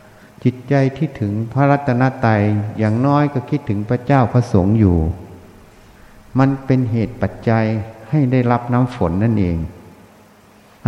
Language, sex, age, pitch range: Thai, male, 60-79, 105-130 Hz